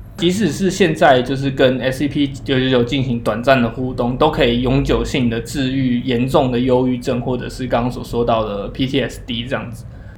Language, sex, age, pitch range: Chinese, male, 20-39, 115-140 Hz